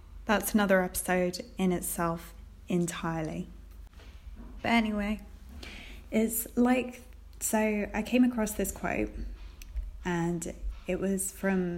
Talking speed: 100 wpm